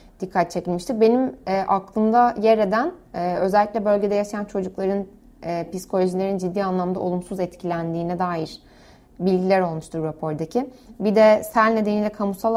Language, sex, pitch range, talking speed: Turkish, female, 185-220 Hz, 130 wpm